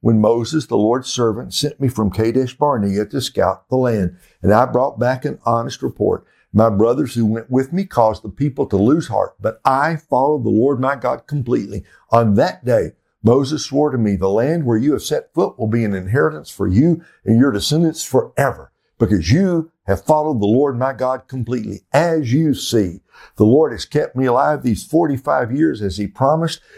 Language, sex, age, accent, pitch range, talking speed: English, male, 60-79, American, 110-145 Hz, 200 wpm